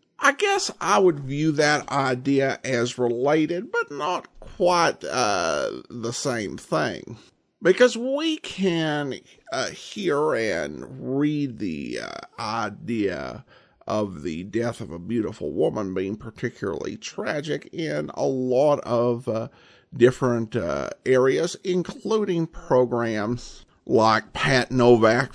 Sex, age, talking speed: male, 50-69, 115 wpm